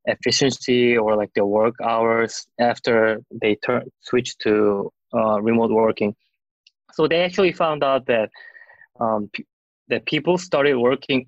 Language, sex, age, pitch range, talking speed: English, male, 20-39, 115-140 Hz, 140 wpm